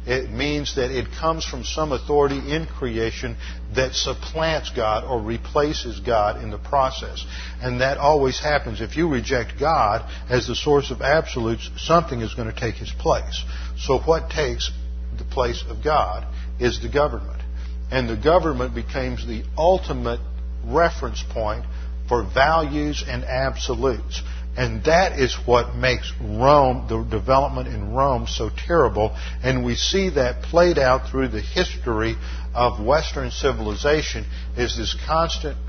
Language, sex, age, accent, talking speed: English, male, 50-69, American, 150 wpm